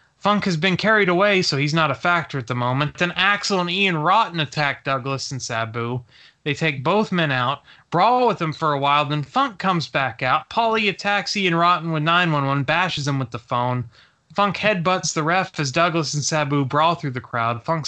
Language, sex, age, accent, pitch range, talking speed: English, male, 20-39, American, 145-185 Hz, 210 wpm